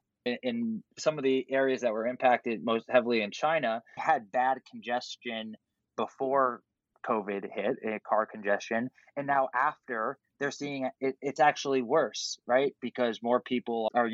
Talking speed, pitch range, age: 145 wpm, 120-140 Hz, 20-39